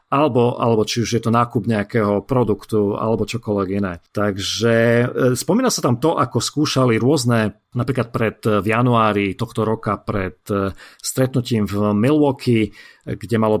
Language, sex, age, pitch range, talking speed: Slovak, male, 40-59, 110-130 Hz, 135 wpm